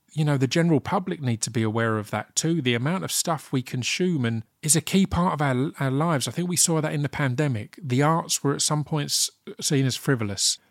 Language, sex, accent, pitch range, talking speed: English, male, British, 115-150 Hz, 245 wpm